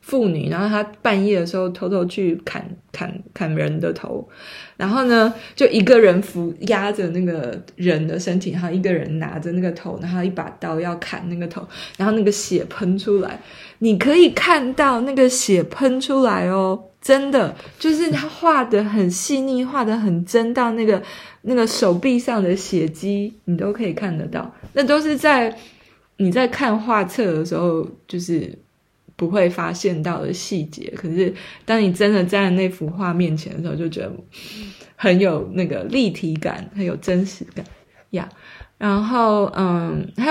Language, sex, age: Chinese, female, 20-39